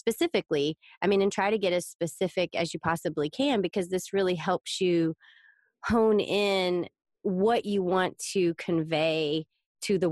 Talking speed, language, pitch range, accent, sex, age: 160 wpm, English, 160-190 Hz, American, female, 30-49